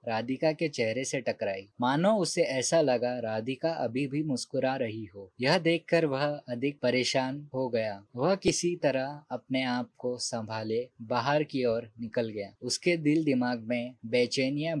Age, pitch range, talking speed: 20-39, 120-145 Hz, 160 wpm